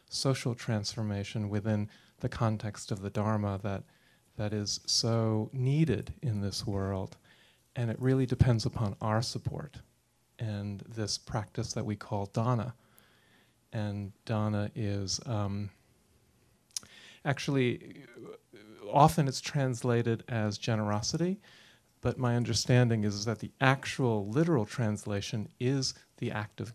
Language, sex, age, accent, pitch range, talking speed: English, male, 40-59, American, 110-125 Hz, 120 wpm